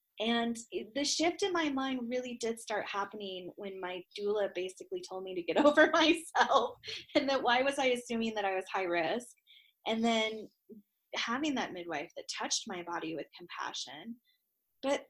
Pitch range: 190-275 Hz